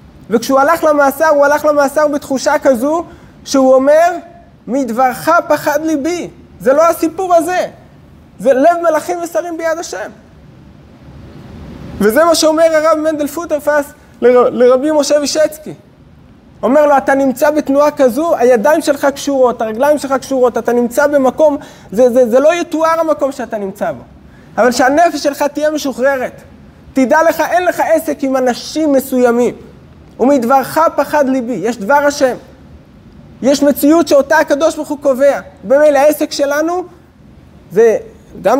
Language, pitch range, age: Hebrew, 250-305 Hz, 20-39